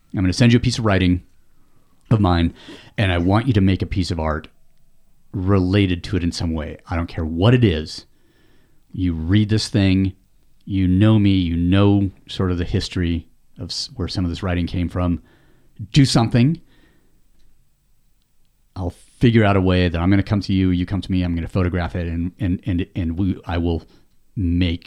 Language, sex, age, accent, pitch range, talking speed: English, male, 30-49, American, 85-100 Hz, 205 wpm